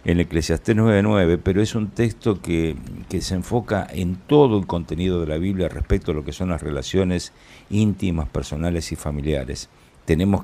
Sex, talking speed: male, 170 wpm